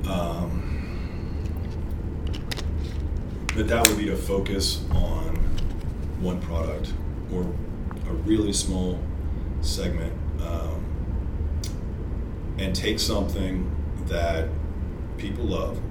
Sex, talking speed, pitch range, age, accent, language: male, 85 wpm, 80-100 Hz, 30-49, American, English